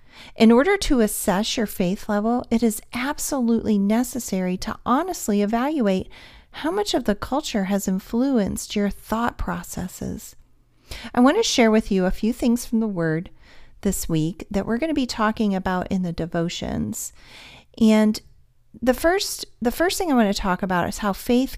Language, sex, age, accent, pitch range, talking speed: English, female, 40-59, American, 185-245 Hz, 170 wpm